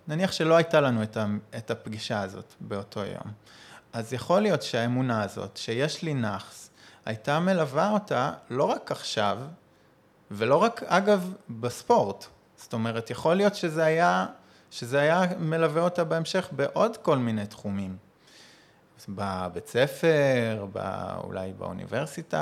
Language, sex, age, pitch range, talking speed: Hebrew, male, 20-39, 105-150 Hz, 125 wpm